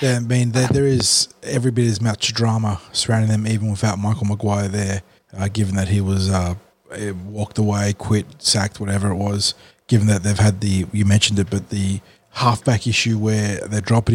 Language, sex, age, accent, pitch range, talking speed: English, male, 20-39, Australian, 100-115 Hz, 200 wpm